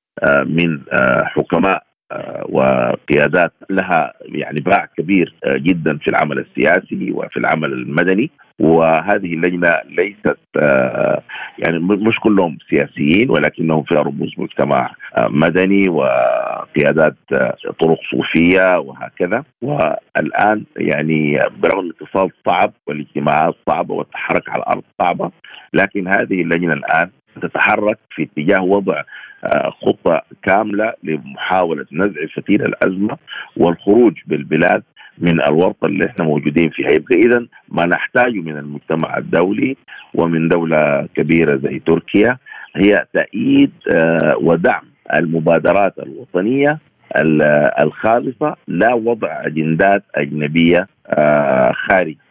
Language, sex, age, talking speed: Arabic, male, 50-69, 100 wpm